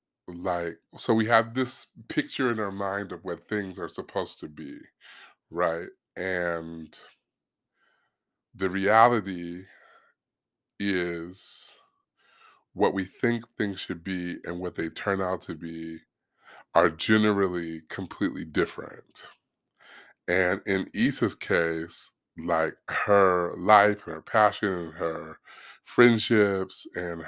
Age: 30-49